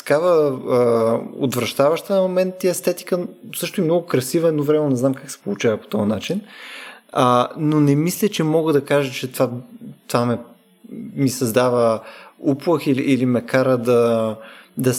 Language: Bulgarian